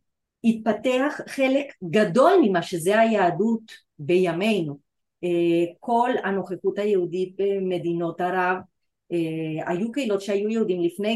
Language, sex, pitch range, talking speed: Hebrew, female, 170-215 Hz, 90 wpm